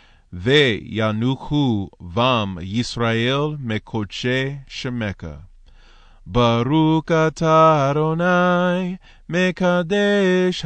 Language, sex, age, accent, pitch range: English, male, 30-49, American, 110-140 Hz